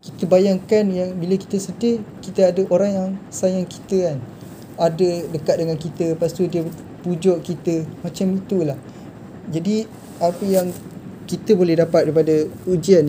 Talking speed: 140 wpm